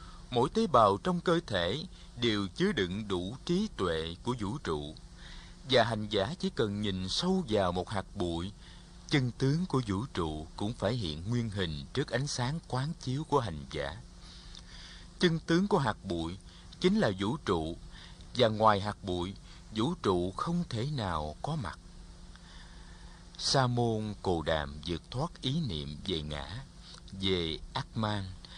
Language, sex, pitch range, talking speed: Vietnamese, male, 90-145 Hz, 160 wpm